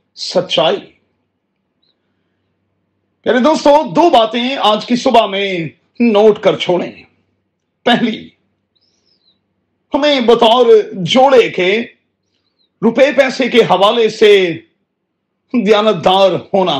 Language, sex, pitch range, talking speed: Urdu, male, 200-255 Hz, 80 wpm